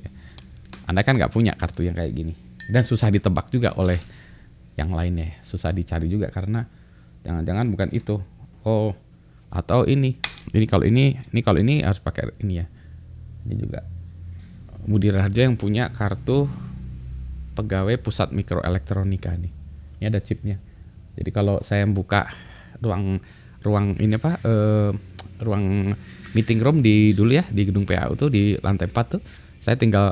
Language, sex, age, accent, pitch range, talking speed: Indonesian, male, 20-39, native, 90-115 Hz, 145 wpm